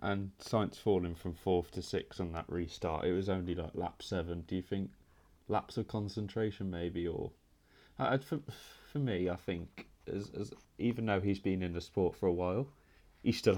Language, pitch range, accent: English, 85-100 Hz, British